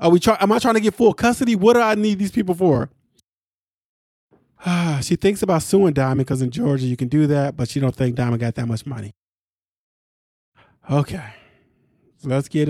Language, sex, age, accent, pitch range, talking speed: English, male, 20-39, American, 125-165 Hz, 205 wpm